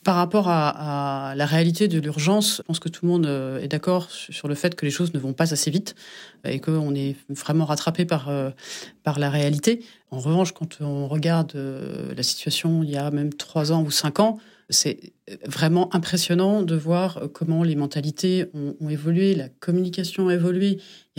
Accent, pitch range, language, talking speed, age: French, 145-185 Hz, French, 200 wpm, 30-49